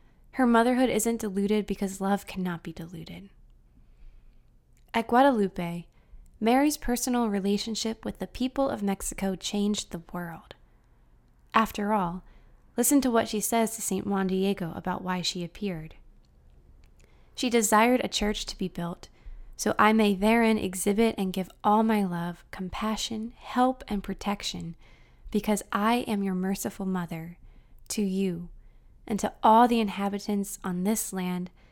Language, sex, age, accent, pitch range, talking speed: English, female, 20-39, American, 180-225 Hz, 140 wpm